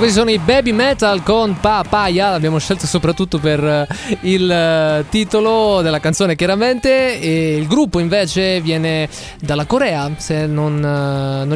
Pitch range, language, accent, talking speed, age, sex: 150-195 Hz, Italian, native, 135 wpm, 20-39, male